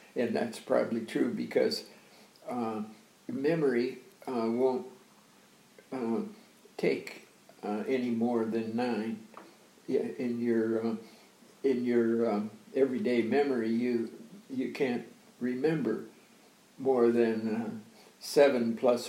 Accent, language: American, English